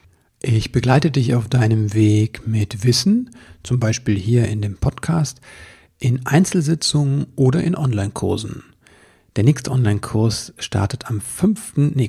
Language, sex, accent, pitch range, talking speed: German, male, German, 110-140 Hz, 130 wpm